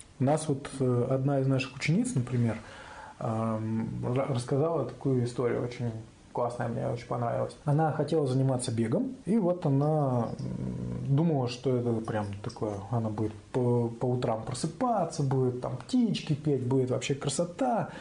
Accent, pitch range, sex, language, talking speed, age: native, 120-155 Hz, male, Russian, 135 wpm, 20-39